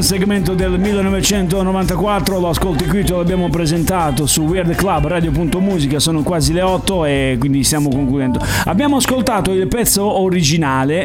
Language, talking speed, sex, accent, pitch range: Italian, 140 wpm, male, native, 140-185 Hz